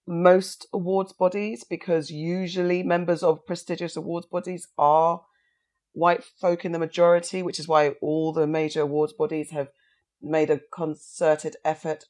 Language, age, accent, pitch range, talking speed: English, 40-59, British, 145-175 Hz, 145 wpm